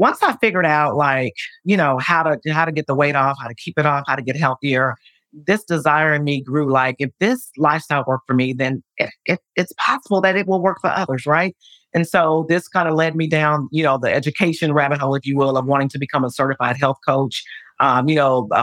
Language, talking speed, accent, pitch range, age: English, 250 wpm, American, 135-160 Hz, 40-59